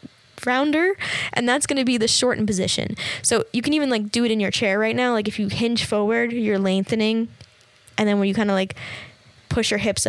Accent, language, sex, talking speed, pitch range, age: American, English, female, 225 wpm, 195-235 Hz, 10-29